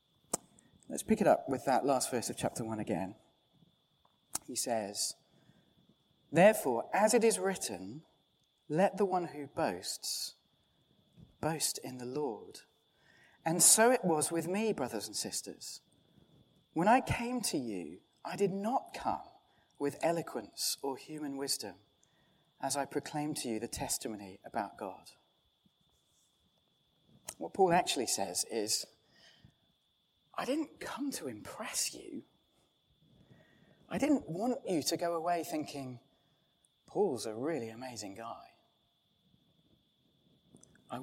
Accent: British